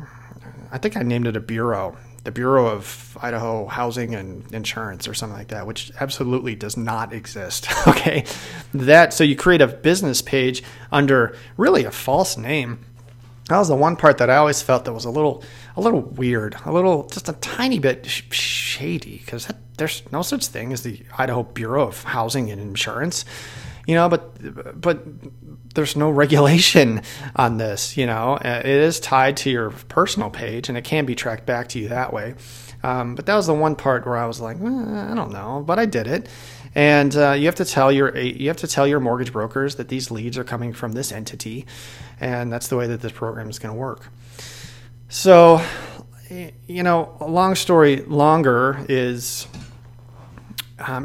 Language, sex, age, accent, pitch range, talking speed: English, male, 30-49, American, 120-145 Hz, 190 wpm